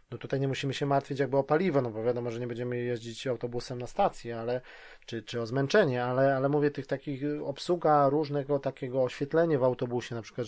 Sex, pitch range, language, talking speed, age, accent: male, 120-160 Hz, Polish, 210 wpm, 20-39, native